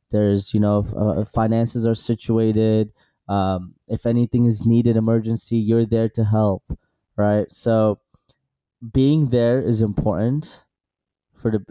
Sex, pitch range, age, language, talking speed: male, 100-115 Hz, 20-39, English, 130 wpm